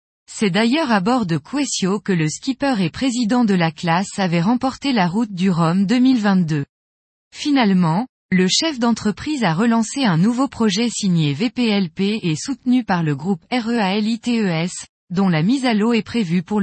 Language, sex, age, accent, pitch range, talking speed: French, female, 20-39, French, 180-245 Hz, 165 wpm